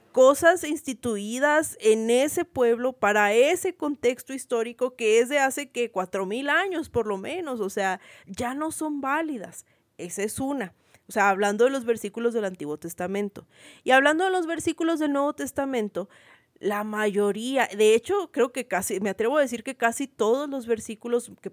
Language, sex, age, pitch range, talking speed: Spanish, female, 30-49, 200-265 Hz, 175 wpm